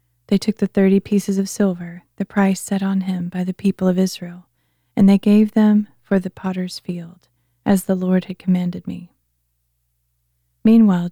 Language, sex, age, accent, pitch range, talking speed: English, female, 30-49, American, 170-205 Hz, 175 wpm